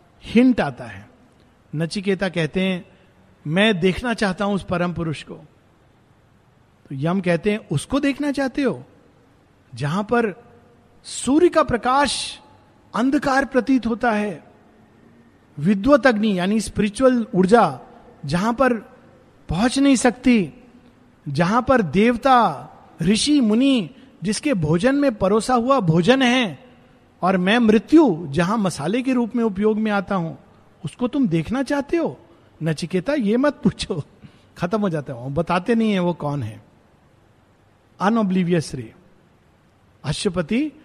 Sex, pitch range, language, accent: male, 150-235 Hz, Hindi, native